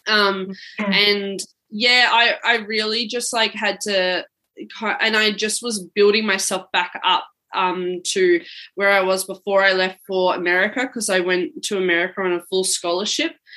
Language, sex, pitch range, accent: English, female, 180-210 Hz, Australian